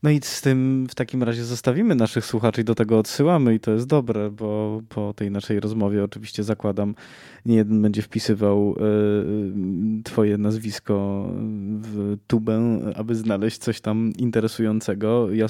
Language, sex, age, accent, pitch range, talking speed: Polish, male, 20-39, native, 100-115 Hz, 145 wpm